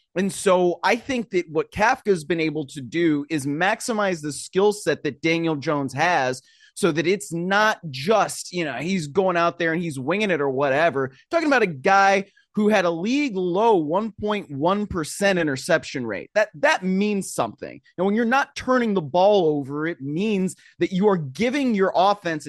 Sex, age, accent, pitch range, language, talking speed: male, 30-49, American, 150-200 Hz, English, 190 wpm